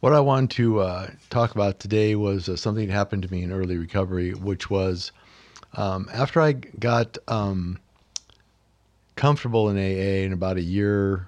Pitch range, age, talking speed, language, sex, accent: 95-110 Hz, 50-69, 170 wpm, English, male, American